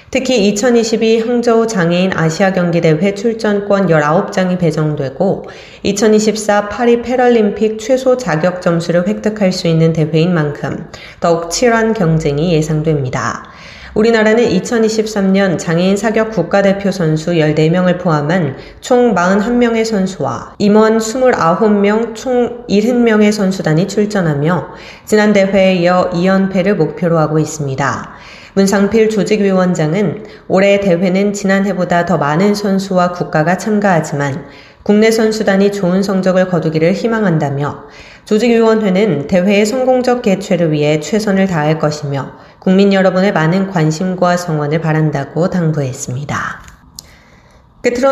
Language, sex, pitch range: Korean, female, 160-215 Hz